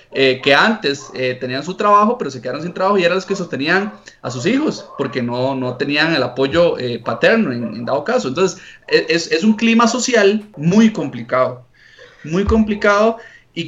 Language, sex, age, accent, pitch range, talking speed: Spanish, male, 30-49, Colombian, 140-210 Hz, 190 wpm